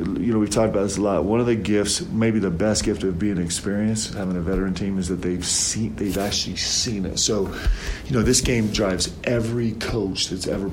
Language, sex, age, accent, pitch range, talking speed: English, male, 40-59, American, 95-115 Hz, 230 wpm